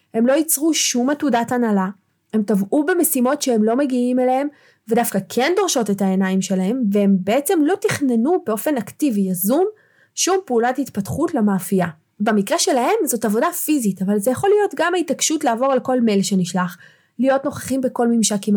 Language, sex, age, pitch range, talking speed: Hebrew, female, 20-39, 195-255 Hz, 165 wpm